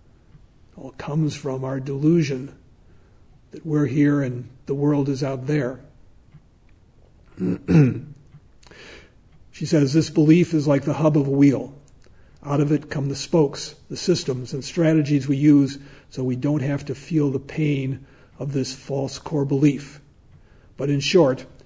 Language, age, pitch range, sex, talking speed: English, 50-69, 130-150 Hz, male, 145 wpm